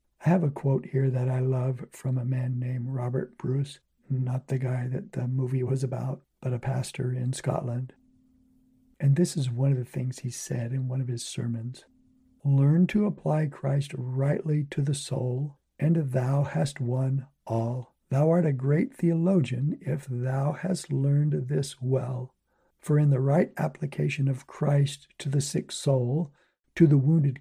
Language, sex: English, male